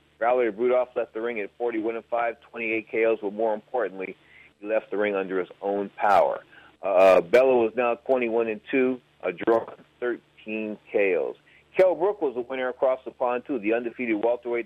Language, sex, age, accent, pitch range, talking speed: English, male, 40-59, American, 105-125 Hz, 180 wpm